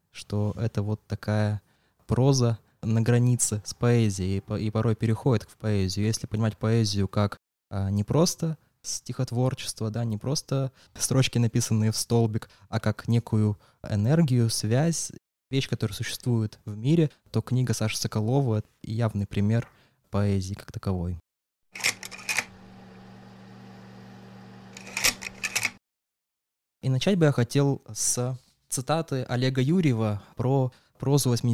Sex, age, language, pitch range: male, 20-39, Russian, 105-130 Hz